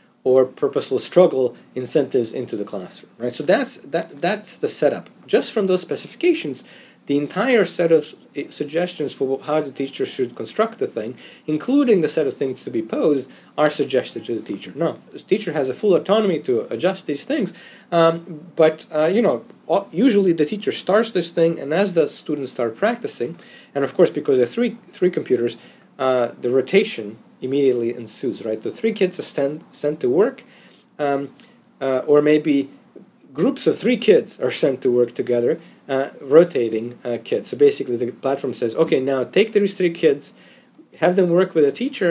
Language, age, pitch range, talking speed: English, 40-59, 135-205 Hz, 185 wpm